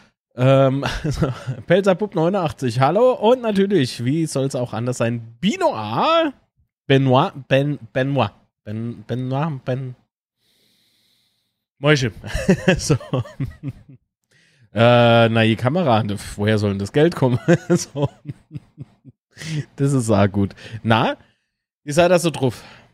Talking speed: 110 wpm